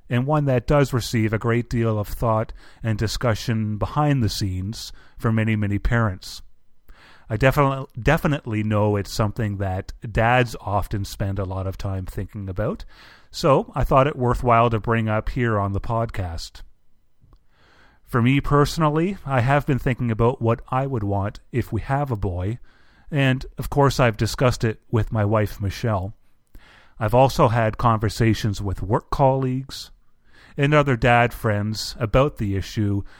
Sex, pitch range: male, 105-125 Hz